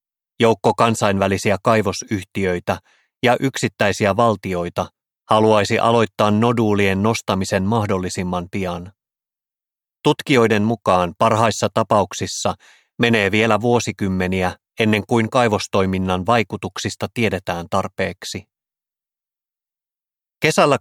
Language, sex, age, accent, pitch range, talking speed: Finnish, male, 30-49, native, 95-115 Hz, 75 wpm